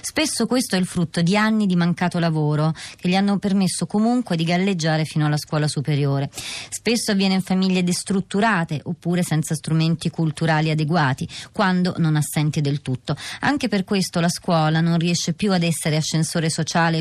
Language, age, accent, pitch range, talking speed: Italian, 30-49, native, 160-190 Hz, 170 wpm